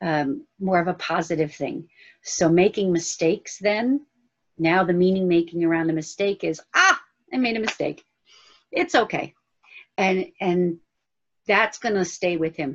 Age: 50-69